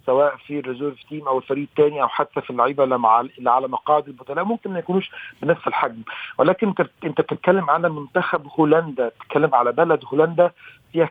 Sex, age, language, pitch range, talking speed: male, 40-59, Arabic, 145-175 Hz, 165 wpm